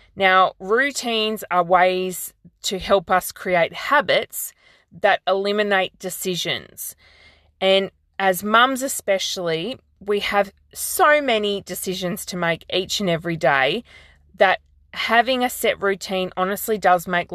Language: English